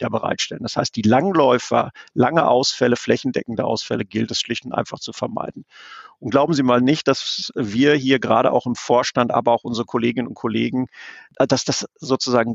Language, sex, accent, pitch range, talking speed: German, male, German, 120-135 Hz, 175 wpm